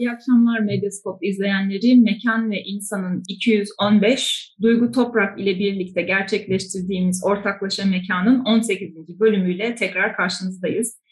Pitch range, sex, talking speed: 200-255 Hz, female, 105 wpm